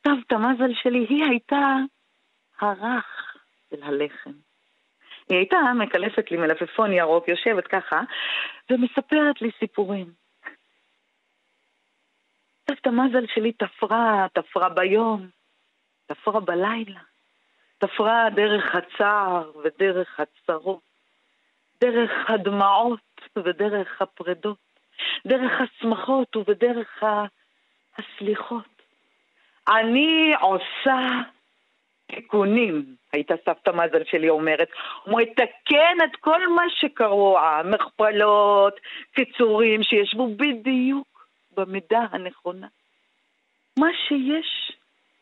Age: 40-59